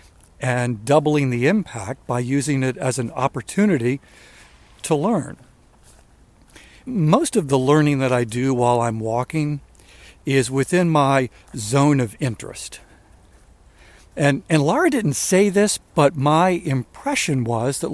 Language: English